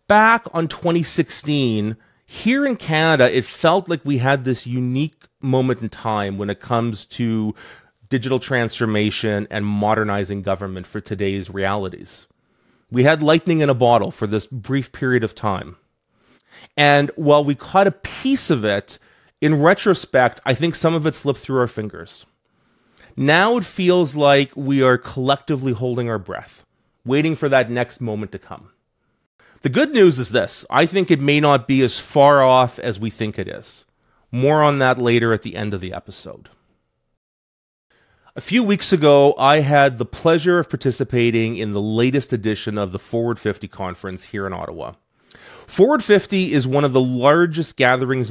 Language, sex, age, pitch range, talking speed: English, male, 30-49, 110-150 Hz, 170 wpm